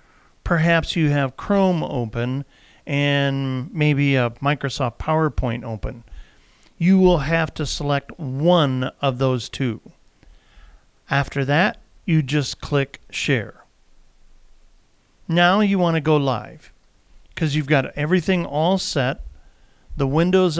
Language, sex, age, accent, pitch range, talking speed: English, male, 50-69, American, 120-165 Hz, 115 wpm